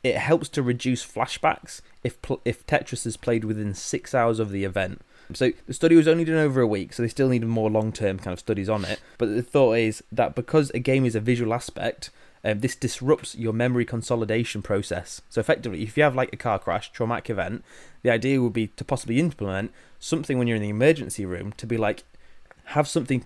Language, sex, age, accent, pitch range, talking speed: English, male, 20-39, British, 110-130 Hz, 220 wpm